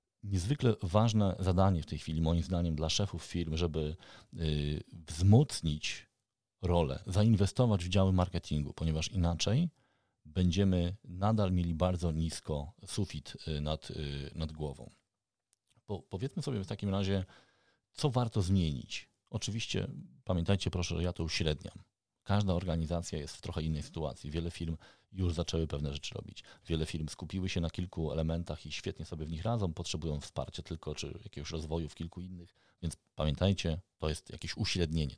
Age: 40-59